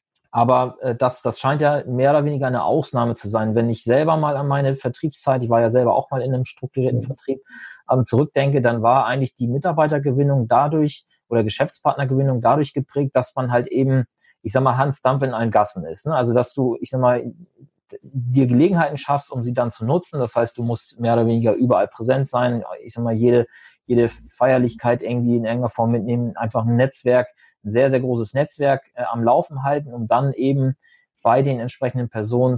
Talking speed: 200 wpm